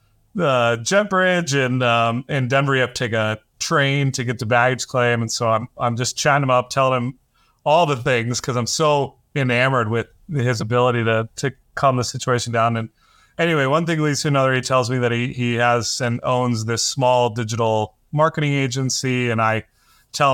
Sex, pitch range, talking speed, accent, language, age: male, 120-140 Hz, 200 wpm, American, English, 30-49